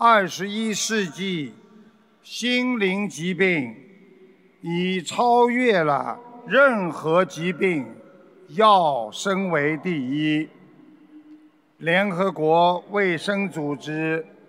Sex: male